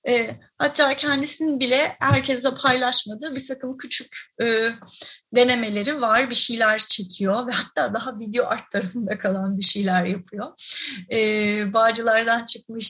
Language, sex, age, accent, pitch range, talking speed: Turkish, female, 30-49, native, 215-265 Hz, 115 wpm